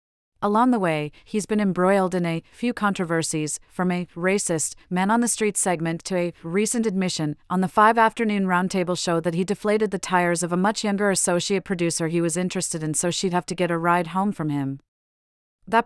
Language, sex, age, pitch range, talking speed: English, female, 40-59, 170-200 Hz, 190 wpm